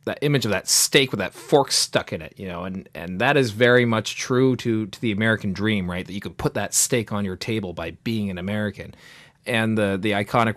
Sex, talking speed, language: male, 245 wpm, English